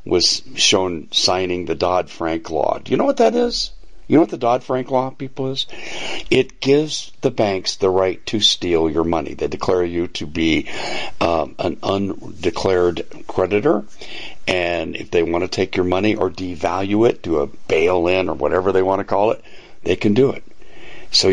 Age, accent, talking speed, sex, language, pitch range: 60-79, American, 185 wpm, male, English, 85-110 Hz